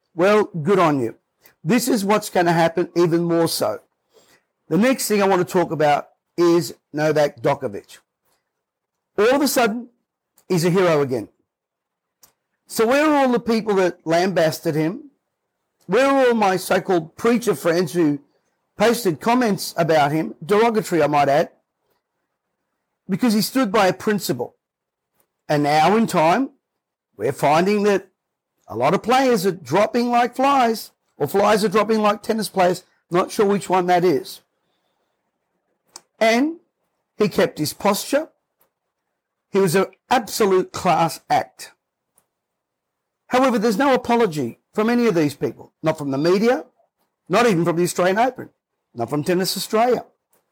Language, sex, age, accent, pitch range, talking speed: English, male, 50-69, Australian, 170-235 Hz, 150 wpm